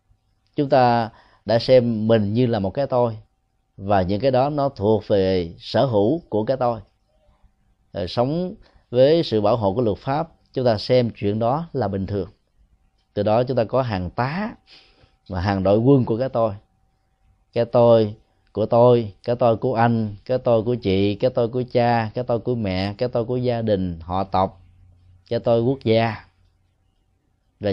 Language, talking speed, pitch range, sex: Vietnamese, 180 wpm, 95-125 Hz, male